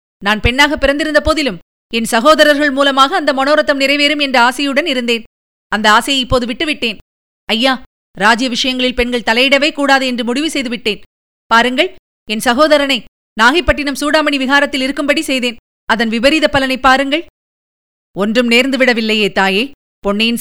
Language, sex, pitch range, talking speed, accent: Tamil, female, 215-270 Hz, 125 wpm, native